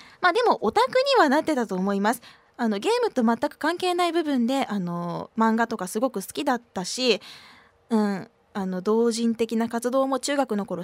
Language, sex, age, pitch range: Japanese, female, 20-39, 215-290 Hz